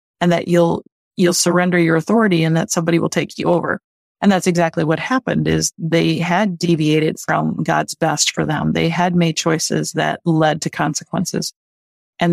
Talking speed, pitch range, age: 180 wpm, 165-190 Hz, 30-49